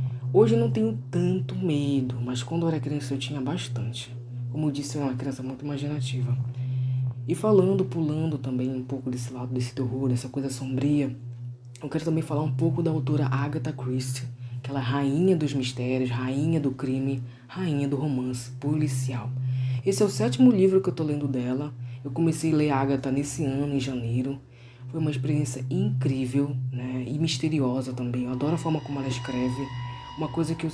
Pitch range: 125-145 Hz